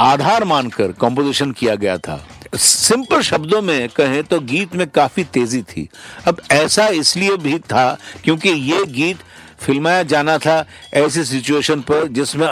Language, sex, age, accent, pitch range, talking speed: Hindi, male, 60-79, native, 135-175 Hz, 150 wpm